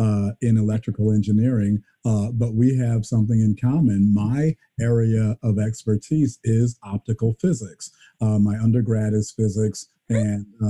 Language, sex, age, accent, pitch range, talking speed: English, male, 50-69, American, 105-120 Hz, 135 wpm